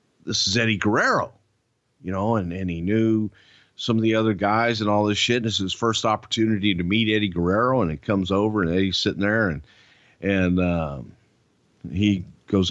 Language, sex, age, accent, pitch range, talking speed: English, male, 50-69, American, 95-120 Hz, 200 wpm